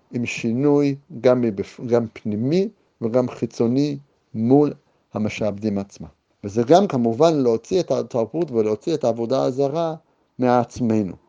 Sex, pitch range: male, 110-155 Hz